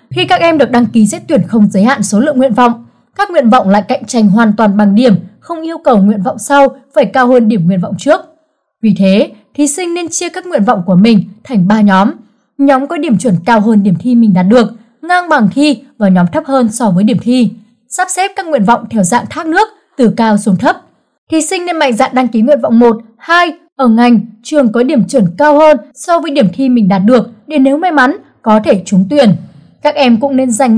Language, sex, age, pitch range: Vietnamese, female, 20-39, 215-295 Hz